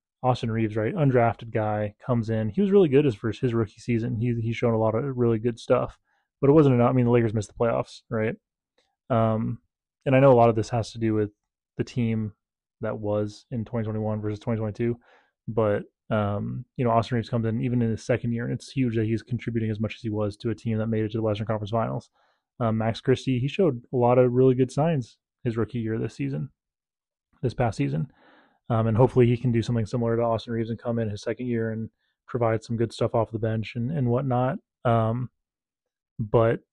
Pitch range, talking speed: 110-125 Hz, 230 wpm